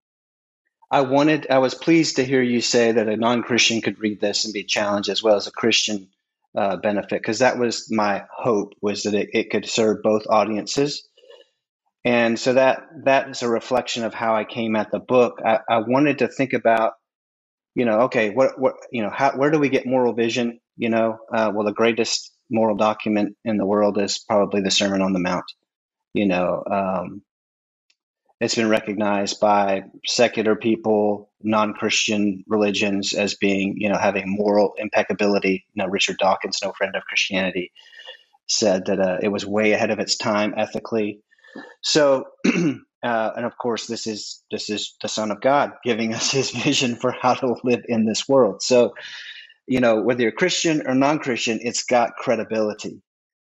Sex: male